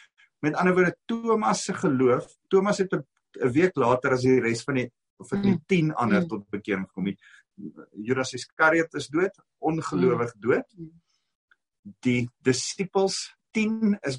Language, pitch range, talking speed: English, 115-180 Hz, 145 wpm